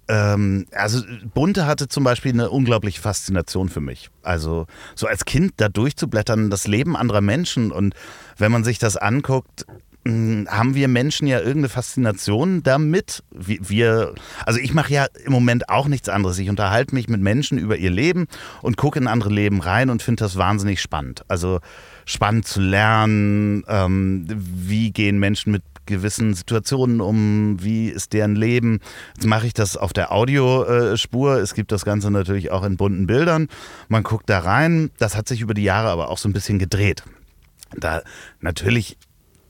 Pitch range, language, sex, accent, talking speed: 100-125 Hz, German, male, German, 165 wpm